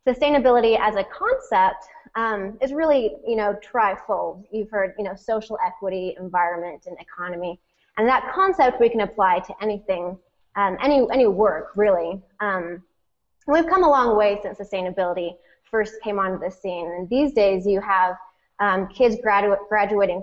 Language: English